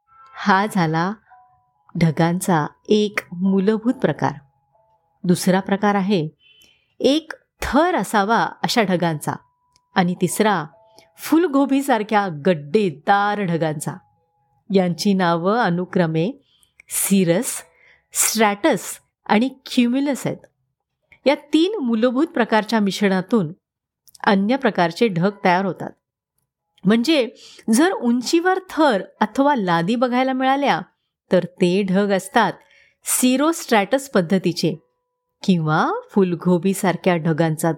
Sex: female